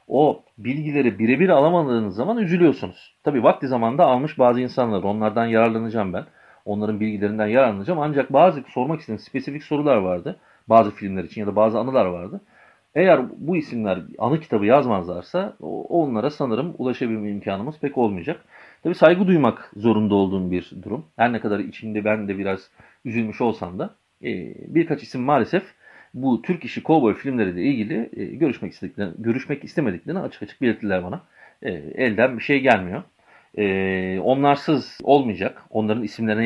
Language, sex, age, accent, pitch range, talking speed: Turkish, male, 40-59, native, 100-125 Hz, 145 wpm